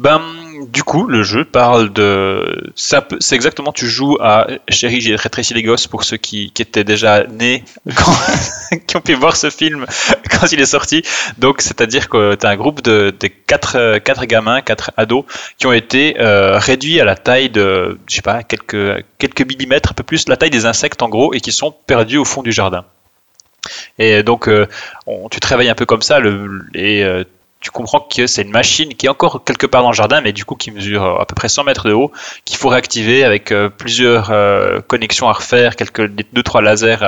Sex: male